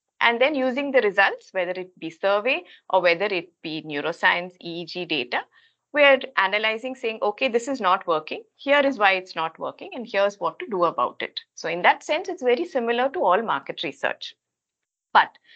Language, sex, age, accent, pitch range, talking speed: English, female, 50-69, Indian, 180-260 Hz, 190 wpm